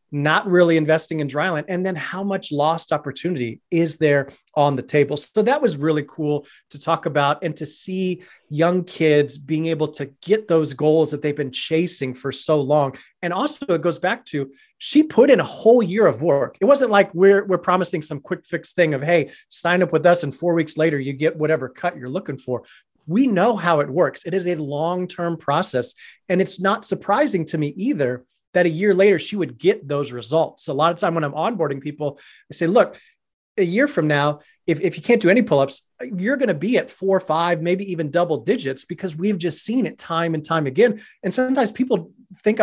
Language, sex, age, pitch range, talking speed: English, male, 30-49, 150-195 Hz, 220 wpm